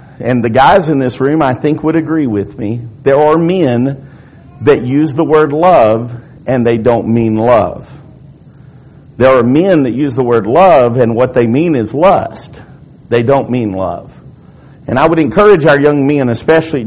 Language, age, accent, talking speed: English, 50-69, American, 180 wpm